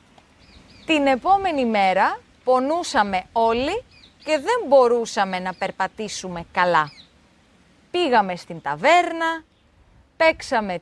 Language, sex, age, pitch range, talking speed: Greek, female, 20-39, 210-320 Hz, 85 wpm